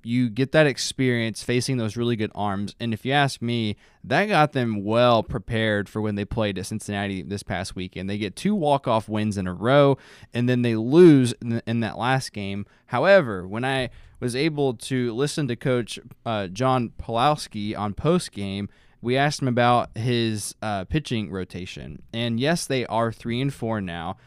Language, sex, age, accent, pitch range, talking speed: English, male, 20-39, American, 105-135 Hz, 185 wpm